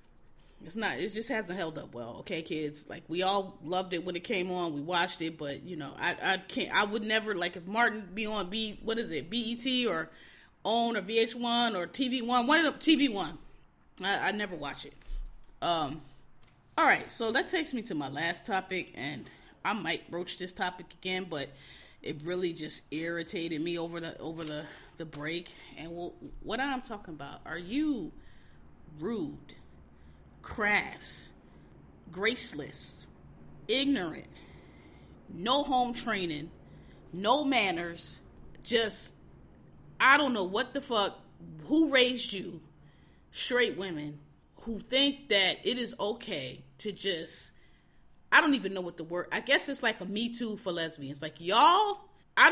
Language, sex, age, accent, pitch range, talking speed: English, female, 20-39, American, 160-235 Hz, 170 wpm